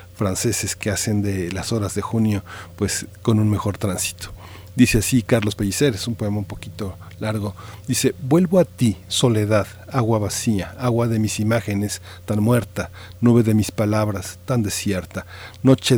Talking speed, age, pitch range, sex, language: 160 wpm, 50-69, 95-115 Hz, male, Spanish